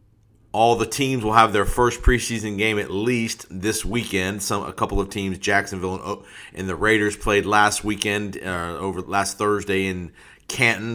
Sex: male